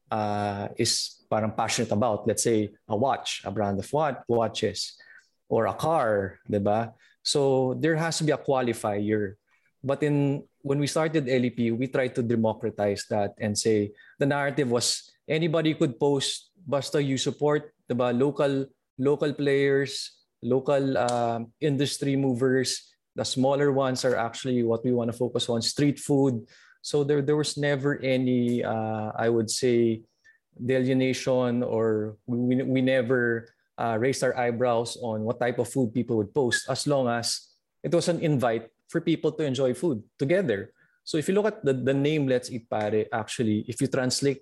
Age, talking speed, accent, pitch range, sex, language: 20-39, 165 wpm, Filipino, 115-140 Hz, male, English